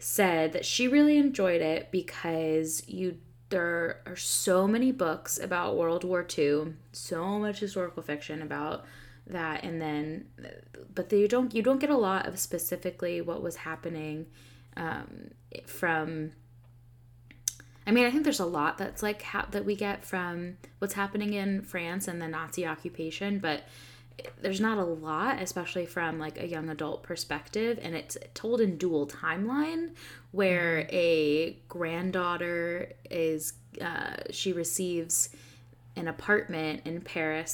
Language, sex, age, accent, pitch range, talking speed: English, female, 10-29, American, 155-190 Hz, 145 wpm